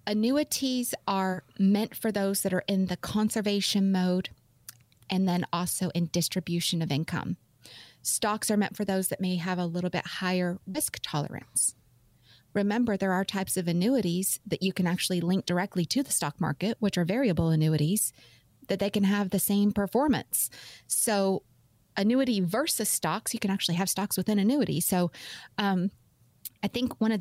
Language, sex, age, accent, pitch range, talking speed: English, female, 30-49, American, 175-210 Hz, 170 wpm